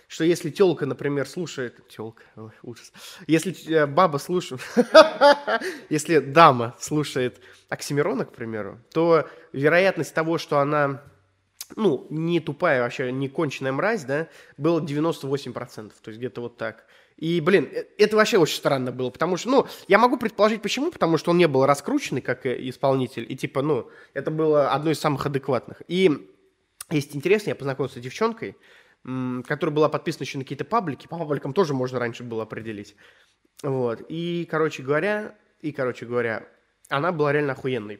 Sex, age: male, 20-39